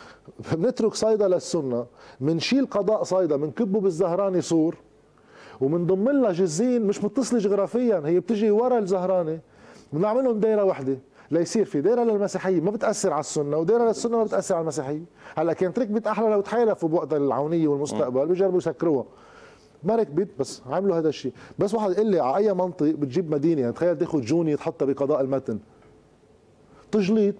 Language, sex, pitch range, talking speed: Arabic, male, 160-210 Hz, 150 wpm